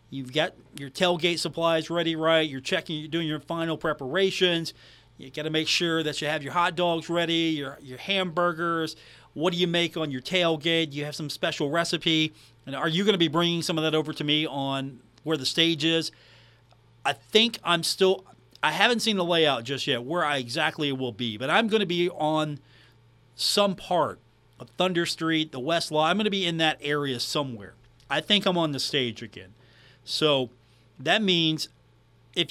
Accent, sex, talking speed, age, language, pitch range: American, male, 200 wpm, 40-59, English, 125-180 Hz